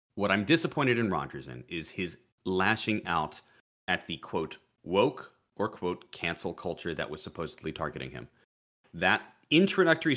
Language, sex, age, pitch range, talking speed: English, male, 30-49, 90-120 Hz, 150 wpm